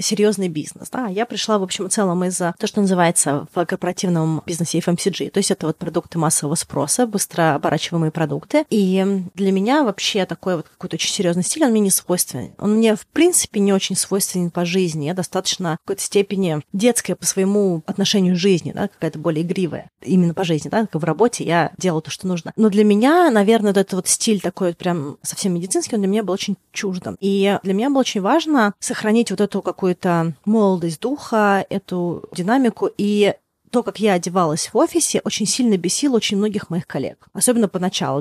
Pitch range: 170-205 Hz